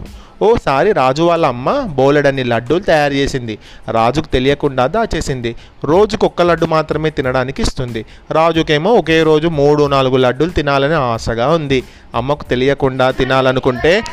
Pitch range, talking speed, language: 125-155 Hz, 120 wpm, Telugu